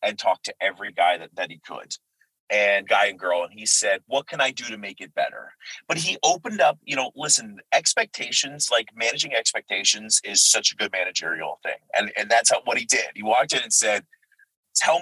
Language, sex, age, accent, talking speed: English, male, 30-49, American, 215 wpm